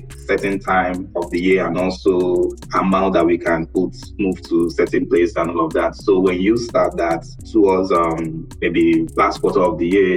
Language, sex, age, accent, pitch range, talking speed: English, male, 20-39, Nigerian, 85-110 Hz, 195 wpm